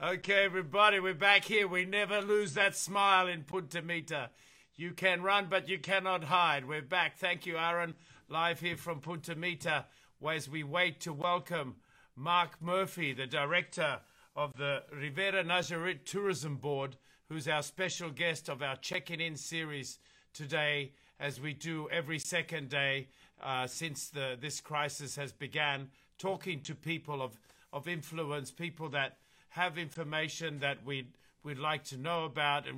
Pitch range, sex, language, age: 140-175 Hz, male, English, 50-69